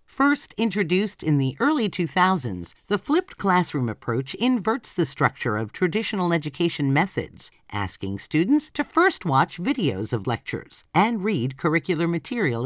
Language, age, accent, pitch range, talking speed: English, 50-69, American, 130-215 Hz, 135 wpm